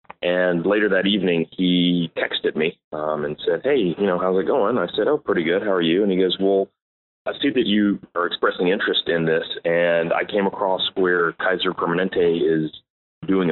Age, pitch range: 30-49, 85-105 Hz